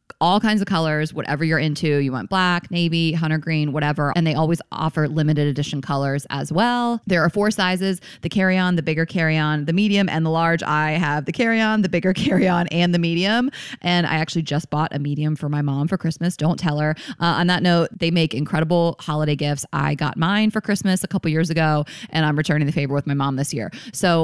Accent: American